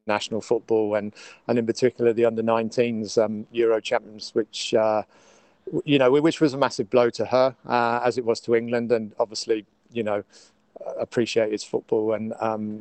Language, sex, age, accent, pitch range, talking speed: English, male, 40-59, British, 110-120 Hz, 175 wpm